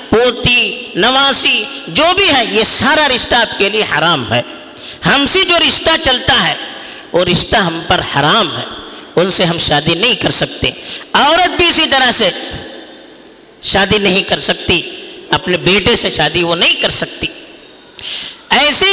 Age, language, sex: 50-69, Urdu, female